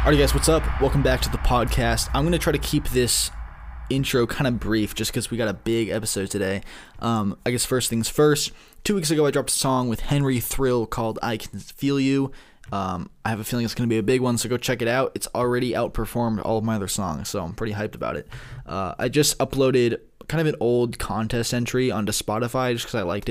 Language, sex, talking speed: English, male, 245 wpm